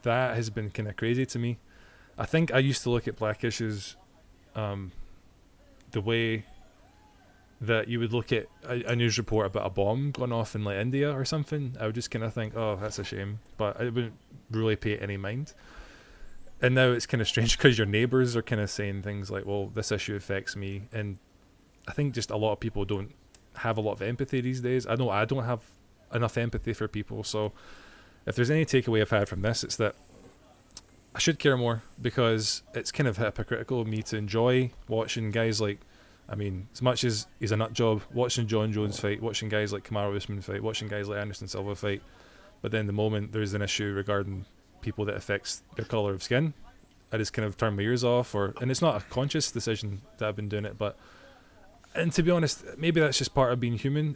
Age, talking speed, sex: 20-39, 220 wpm, male